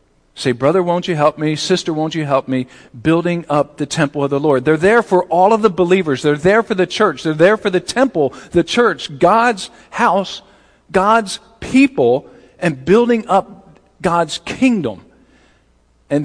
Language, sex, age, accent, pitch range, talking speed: English, male, 50-69, American, 140-180 Hz, 175 wpm